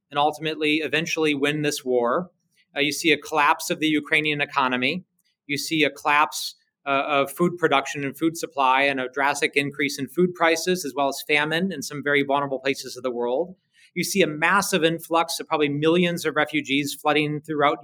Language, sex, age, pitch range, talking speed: English, male, 30-49, 140-165 Hz, 190 wpm